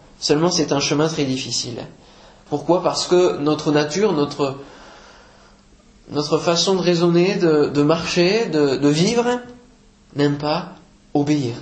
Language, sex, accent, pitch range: French, male, French, 140-195 Hz